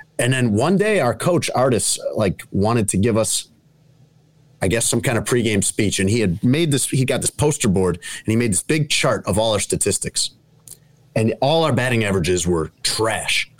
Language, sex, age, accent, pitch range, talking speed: English, male, 30-49, American, 105-145 Hz, 205 wpm